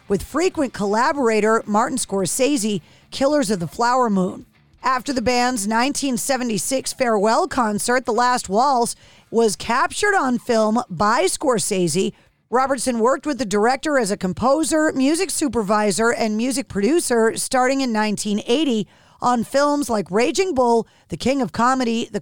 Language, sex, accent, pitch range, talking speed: English, female, American, 215-270 Hz, 140 wpm